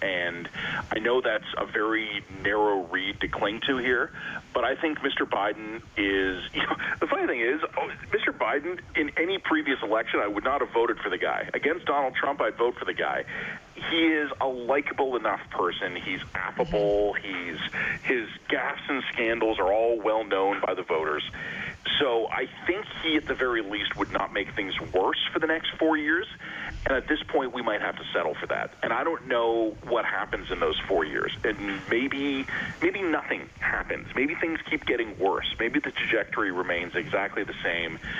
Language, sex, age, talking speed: English, male, 40-59, 190 wpm